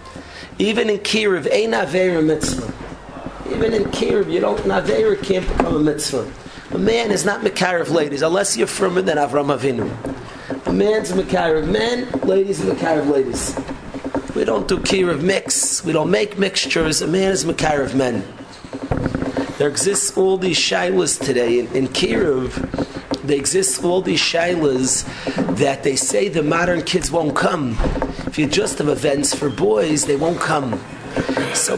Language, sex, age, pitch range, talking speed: English, male, 40-59, 135-190 Hz, 160 wpm